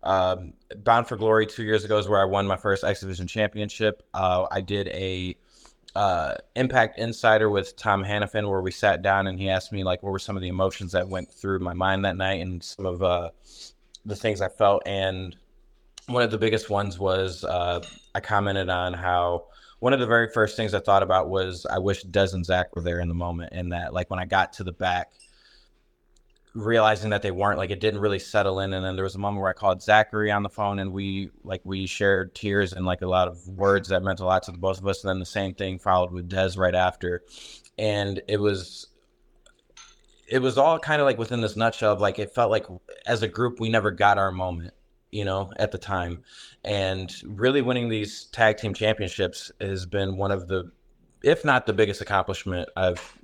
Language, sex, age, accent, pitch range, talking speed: English, male, 20-39, American, 90-105 Hz, 225 wpm